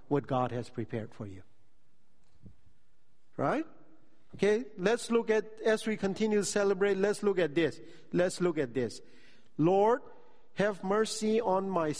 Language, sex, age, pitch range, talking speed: English, male, 50-69, 150-200 Hz, 145 wpm